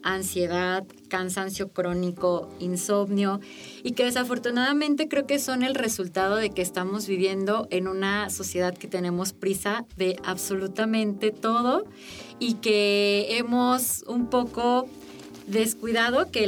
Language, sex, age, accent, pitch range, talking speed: Spanish, female, 30-49, Mexican, 175-210 Hz, 115 wpm